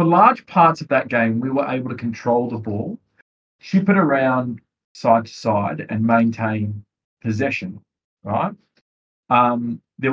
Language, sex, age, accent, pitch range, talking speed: English, male, 40-59, Australian, 110-145 Hz, 150 wpm